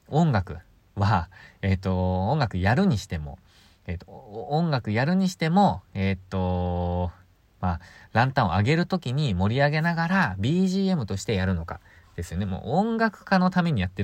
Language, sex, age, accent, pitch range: Japanese, male, 20-39, native, 95-145 Hz